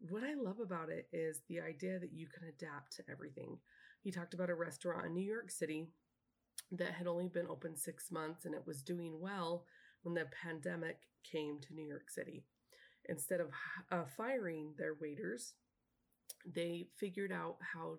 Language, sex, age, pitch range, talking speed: English, female, 20-39, 160-180 Hz, 175 wpm